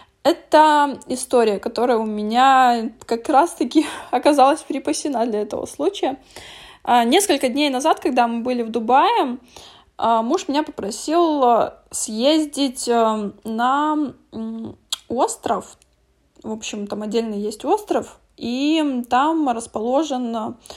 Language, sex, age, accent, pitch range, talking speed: Russian, female, 20-39, native, 240-310 Hz, 100 wpm